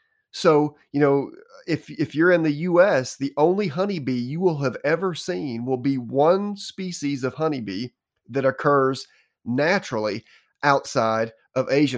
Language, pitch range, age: English, 120-160 Hz, 30-49